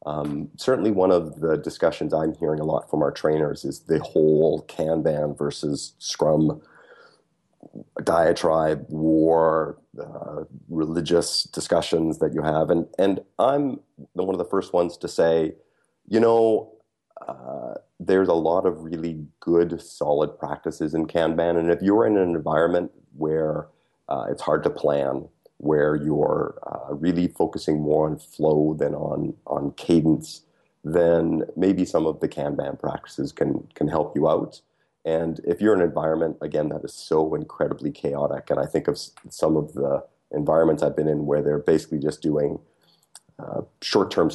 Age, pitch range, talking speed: 30-49, 75-85 Hz, 155 wpm